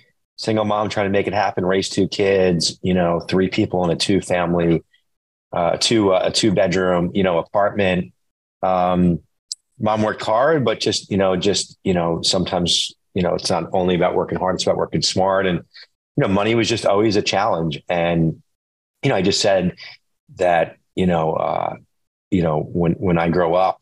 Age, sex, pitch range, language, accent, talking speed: 30-49, male, 90-115 Hz, English, American, 190 wpm